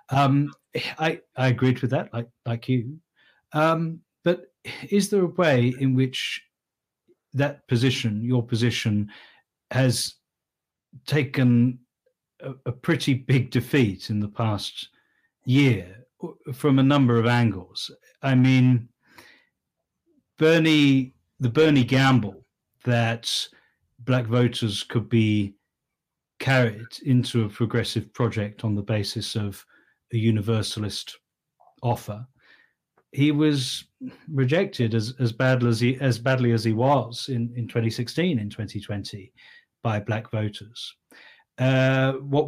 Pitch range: 115-135 Hz